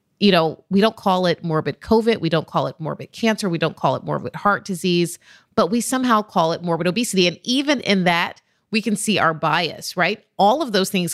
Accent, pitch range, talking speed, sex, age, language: American, 165-220 Hz, 225 wpm, female, 30-49, English